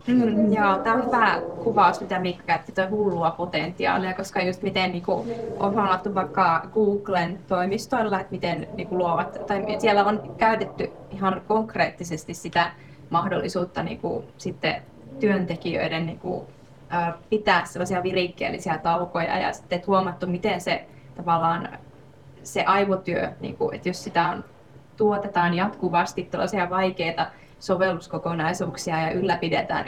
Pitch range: 165-190 Hz